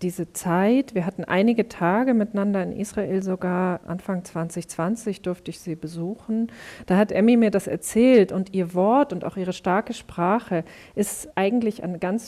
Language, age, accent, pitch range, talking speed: German, 40-59, German, 175-210 Hz, 165 wpm